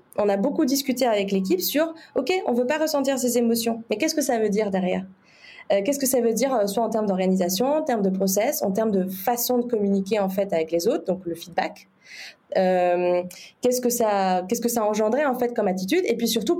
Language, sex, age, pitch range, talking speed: French, female, 20-39, 190-245 Hz, 235 wpm